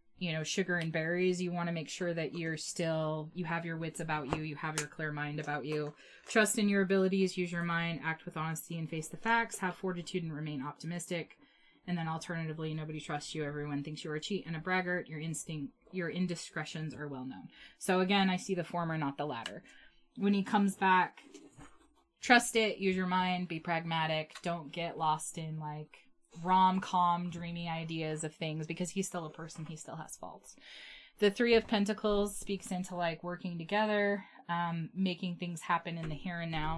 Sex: female